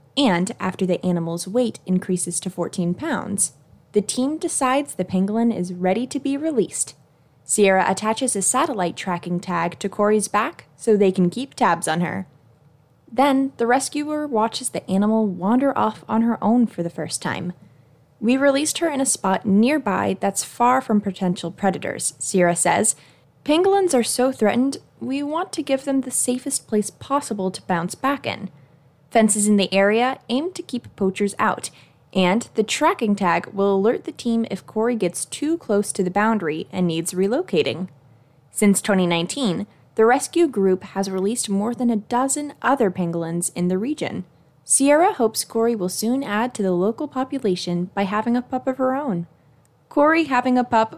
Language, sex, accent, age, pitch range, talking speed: English, female, American, 10-29, 175-250 Hz, 170 wpm